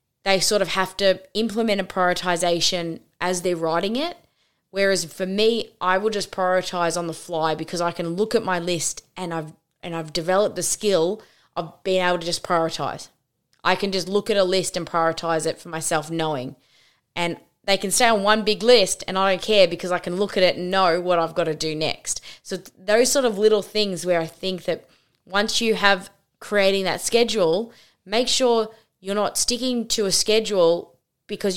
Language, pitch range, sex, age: English, 170-200 Hz, female, 20-39